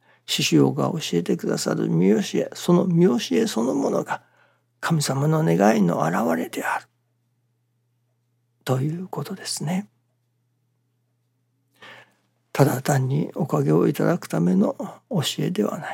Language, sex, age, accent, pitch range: Japanese, male, 60-79, native, 120-160 Hz